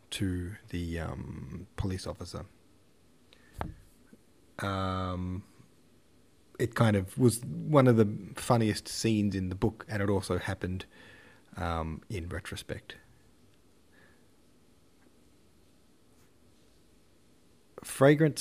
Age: 30-49